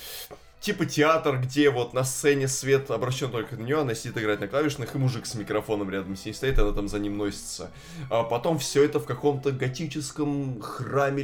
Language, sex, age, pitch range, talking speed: Russian, male, 20-39, 115-150 Hz, 200 wpm